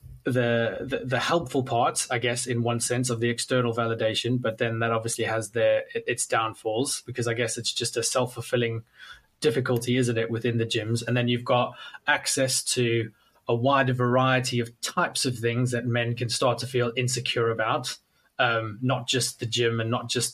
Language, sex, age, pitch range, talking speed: English, male, 20-39, 115-130 Hz, 190 wpm